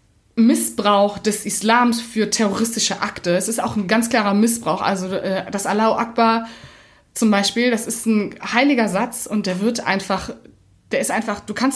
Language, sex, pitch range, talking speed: German, female, 195-235 Hz, 170 wpm